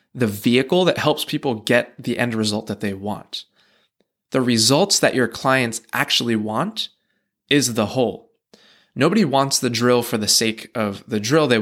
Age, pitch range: 20-39, 110-135 Hz